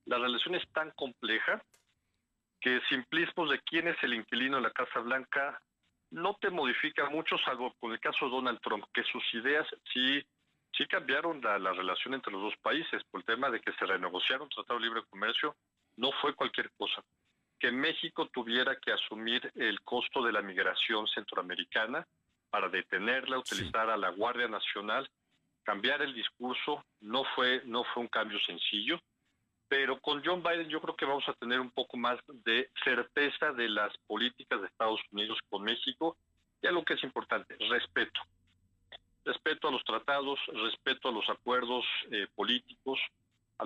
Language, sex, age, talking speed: Spanish, male, 50-69, 170 wpm